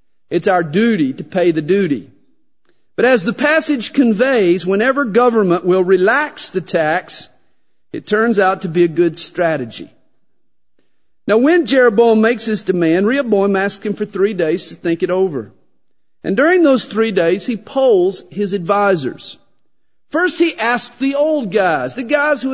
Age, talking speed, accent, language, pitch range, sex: 50-69, 160 wpm, American, English, 175-245 Hz, male